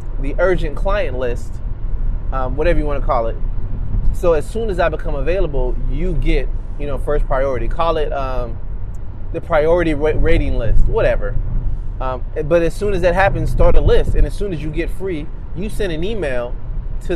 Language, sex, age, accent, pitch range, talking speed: English, male, 20-39, American, 105-160 Hz, 190 wpm